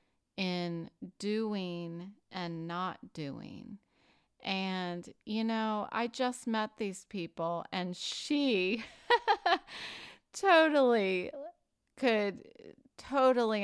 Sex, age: female, 30-49